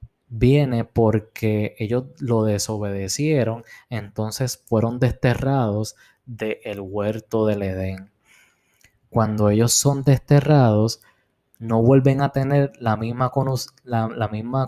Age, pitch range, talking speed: 20-39, 110-130 Hz, 100 wpm